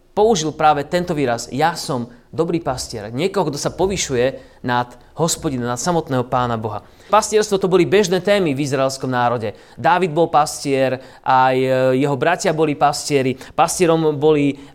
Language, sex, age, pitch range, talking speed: Slovak, male, 30-49, 135-165 Hz, 145 wpm